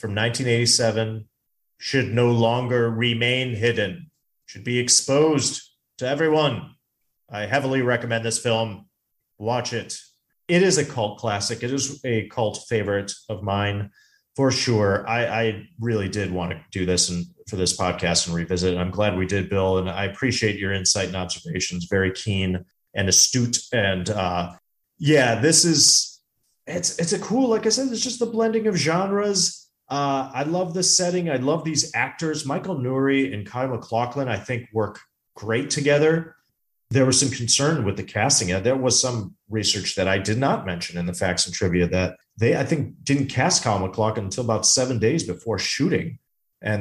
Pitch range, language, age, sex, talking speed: 100-135 Hz, English, 30-49, male, 180 wpm